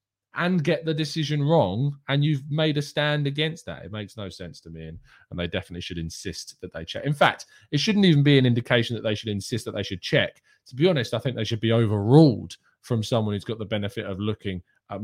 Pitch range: 100-130 Hz